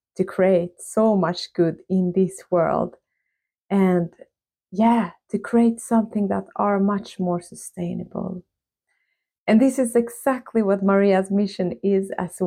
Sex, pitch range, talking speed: female, 185-235 Hz, 130 wpm